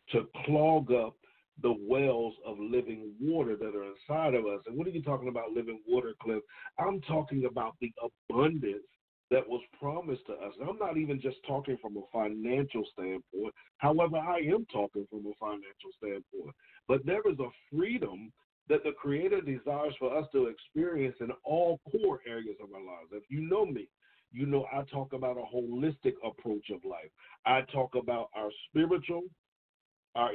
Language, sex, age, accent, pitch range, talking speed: English, male, 50-69, American, 125-175 Hz, 180 wpm